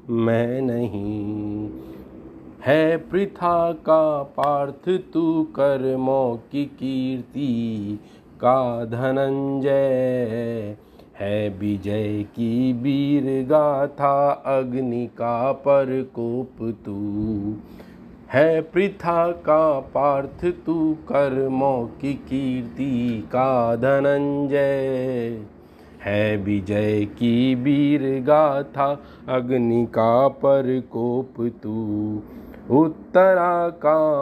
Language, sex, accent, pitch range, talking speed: Hindi, male, native, 115-145 Hz, 75 wpm